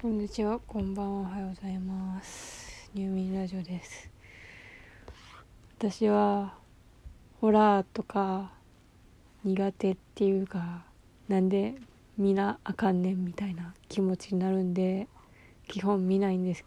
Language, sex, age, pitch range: Japanese, female, 20-39, 190-210 Hz